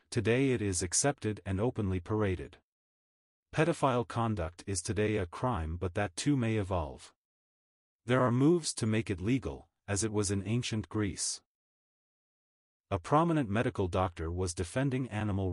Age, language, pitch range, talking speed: 40-59, English, 90-120 Hz, 145 wpm